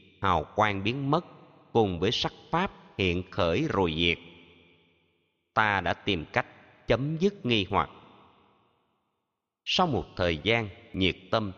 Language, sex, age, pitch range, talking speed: Vietnamese, male, 30-49, 90-130 Hz, 135 wpm